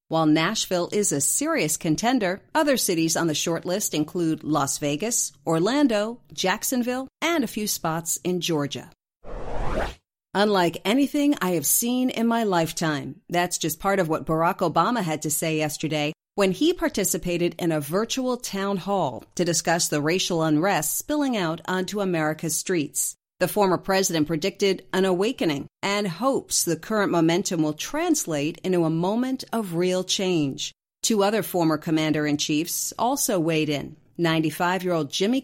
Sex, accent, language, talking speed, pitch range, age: female, American, English, 150 wpm, 160-215 Hz, 50-69